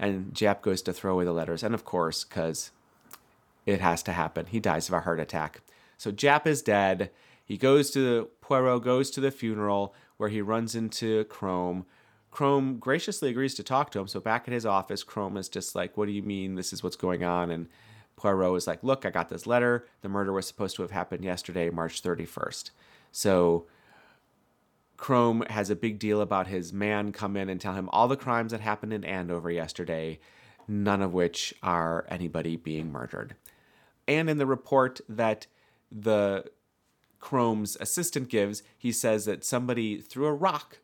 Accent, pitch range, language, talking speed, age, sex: American, 95-125 Hz, English, 190 wpm, 30-49, male